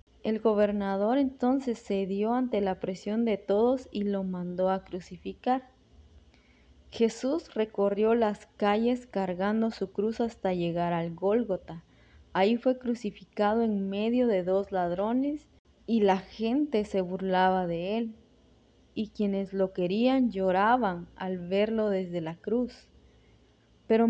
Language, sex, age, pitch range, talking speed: Spanish, female, 20-39, 190-230 Hz, 125 wpm